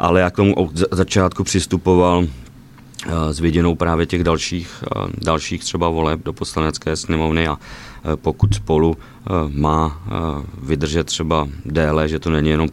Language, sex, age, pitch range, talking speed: Czech, male, 30-49, 75-80 Hz, 125 wpm